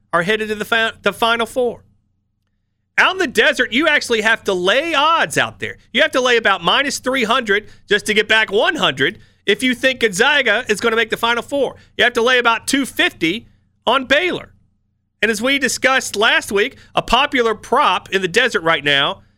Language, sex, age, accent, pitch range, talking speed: English, male, 40-59, American, 180-255 Hz, 200 wpm